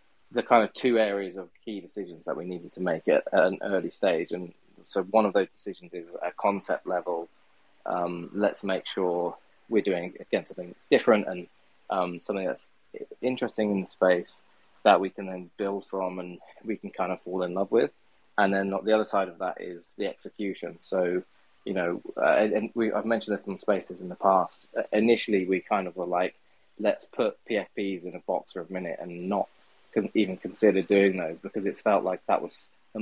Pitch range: 90-105 Hz